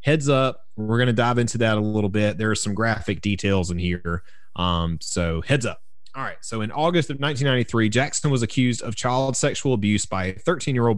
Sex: male